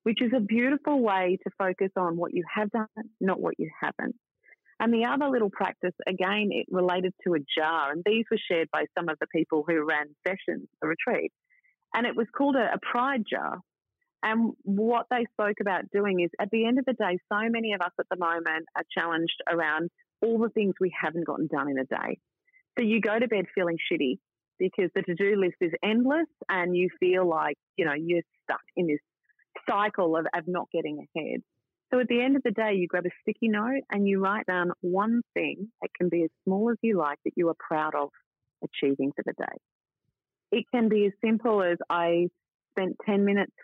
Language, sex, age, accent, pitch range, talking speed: English, female, 30-49, Australian, 170-220 Hz, 215 wpm